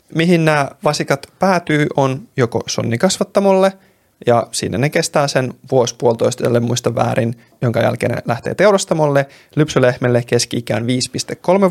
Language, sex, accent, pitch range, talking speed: Finnish, male, native, 120-155 Hz, 125 wpm